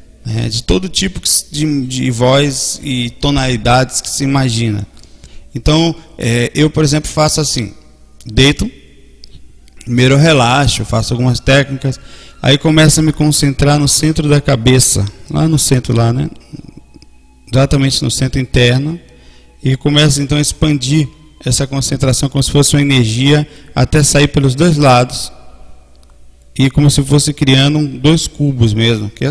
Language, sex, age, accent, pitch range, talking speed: Portuguese, male, 20-39, Brazilian, 115-145 Hz, 145 wpm